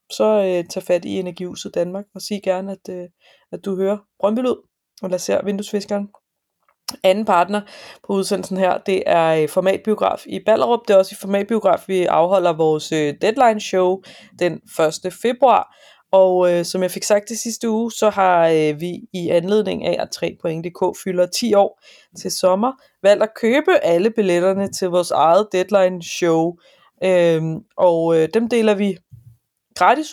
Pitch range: 175-210 Hz